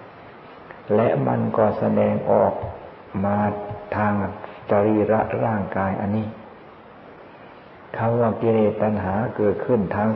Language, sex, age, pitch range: Thai, male, 60-79, 100-110 Hz